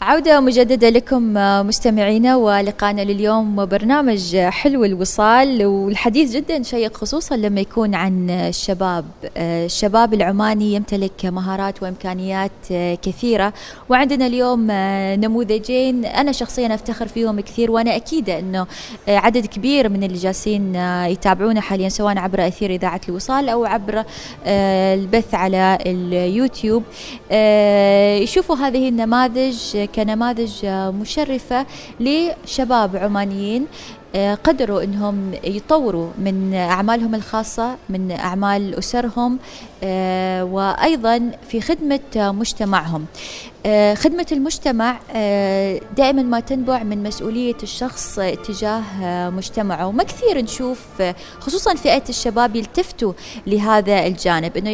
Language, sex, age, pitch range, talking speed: Arabic, female, 20-39, 195-245 Hz, 100 wpm